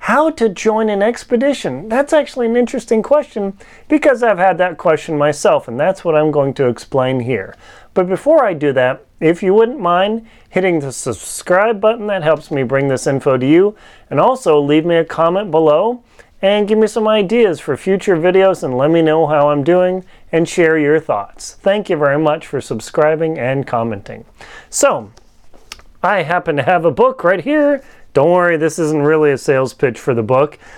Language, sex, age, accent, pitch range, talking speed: English, male, 30-49, American, 150-210 Hz, 195 wpm